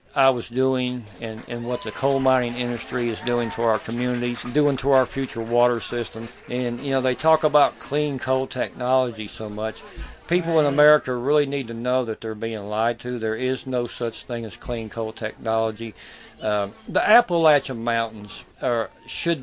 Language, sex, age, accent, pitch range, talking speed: English, male, 50-69, American, 115-150 Hz, 180 wpm